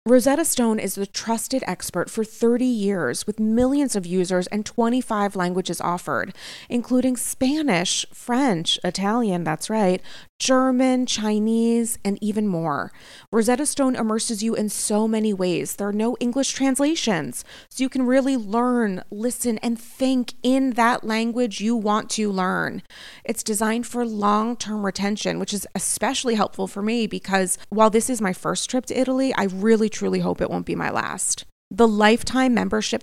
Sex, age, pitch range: female, 30-49, 195-250 Hz